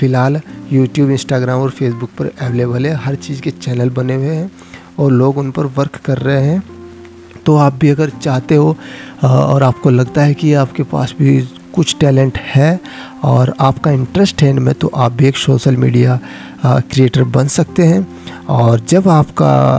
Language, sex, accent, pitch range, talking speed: English, male, Indian, 120-145 Hz, 175 wpm